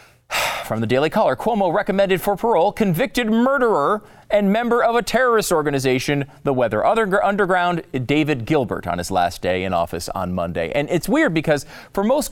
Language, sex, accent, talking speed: English, male, American, 170 wpm